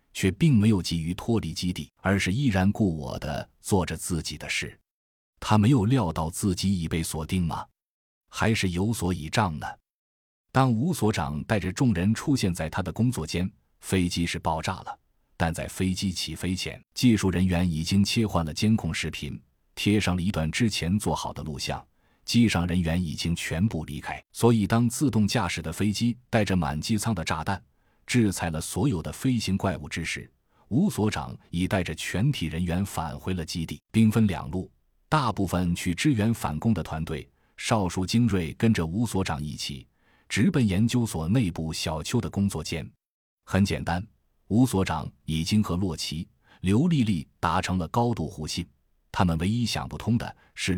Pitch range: 80-110 Hz